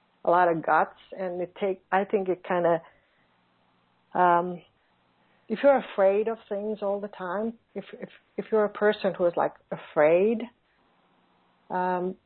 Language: English